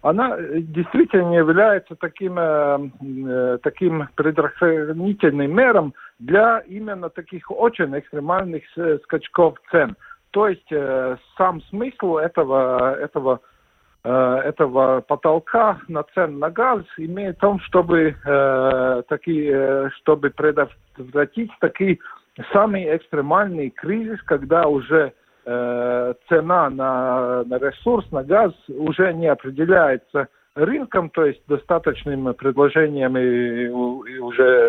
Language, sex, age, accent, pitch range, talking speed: Russian, male, 50-69, native, 130-180 Hz, 95 wpm